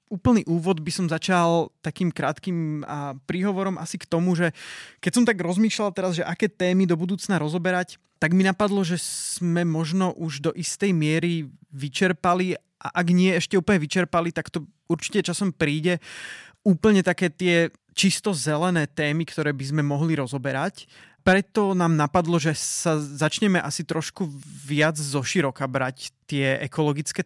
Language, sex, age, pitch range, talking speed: Slovak, male, 20-39, 150-180 Hz, 150 wpm